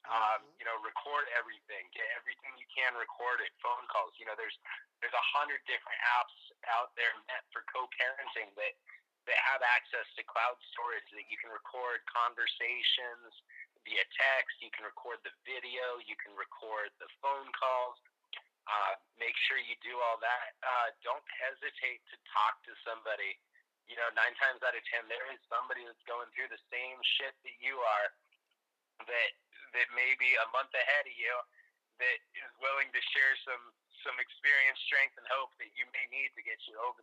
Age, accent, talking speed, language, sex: 30-49, American, 180 wpm, English, male